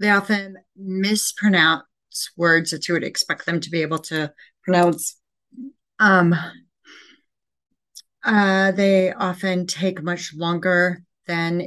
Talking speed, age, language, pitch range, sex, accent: 115 wpm, 30-49, English, 160-190 Hz, female, American